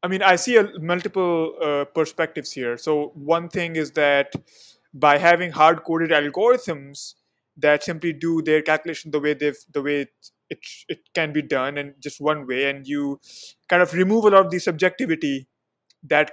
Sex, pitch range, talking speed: male, 155-195 Hz, 185 wpm